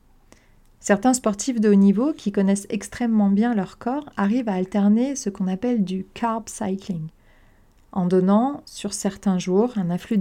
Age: 40-59